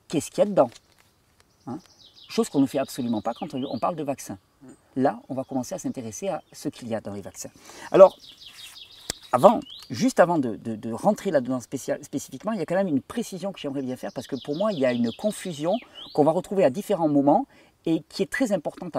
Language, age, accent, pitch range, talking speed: French, 40-59, French, 135-220 Hz, 225 wpm